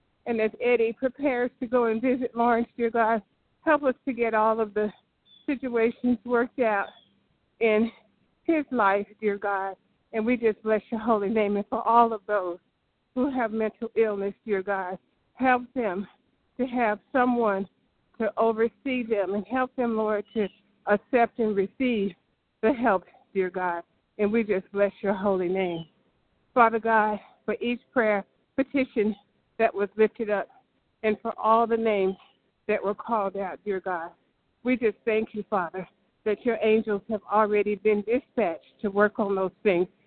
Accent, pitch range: American, 200-230 Hz